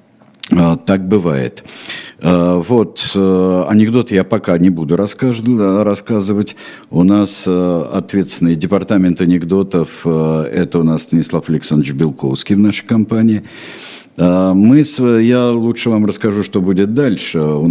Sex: male